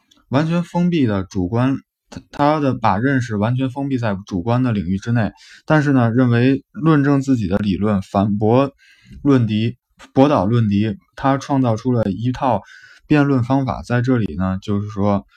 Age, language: 20-39, Chinese